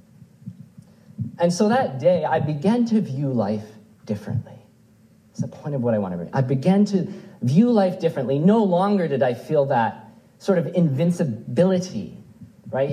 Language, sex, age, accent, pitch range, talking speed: English, male, 40-59, American, 130-195 Hz, 160 wpm